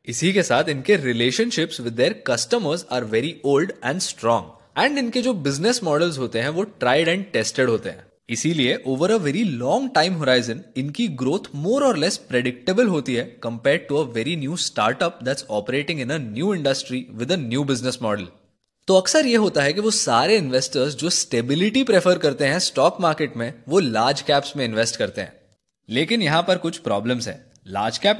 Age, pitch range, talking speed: 20-39, 125-185 Hz, 185 wpm